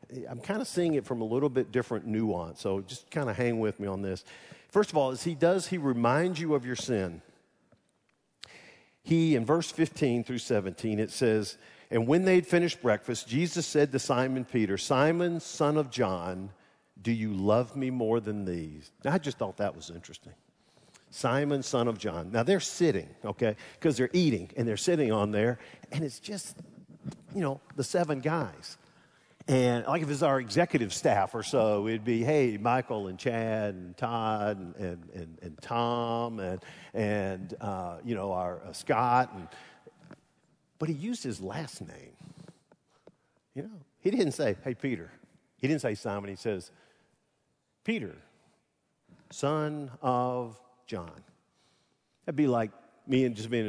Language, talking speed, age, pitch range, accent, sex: English, 175 wpm, 50-69, 105-150 Hz, American, male